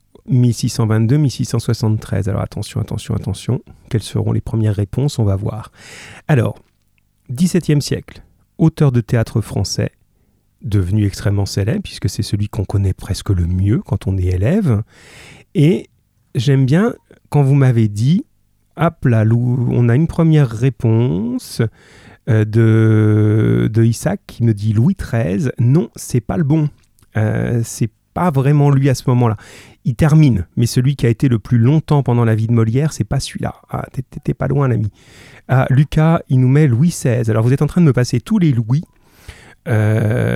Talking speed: 165 wpm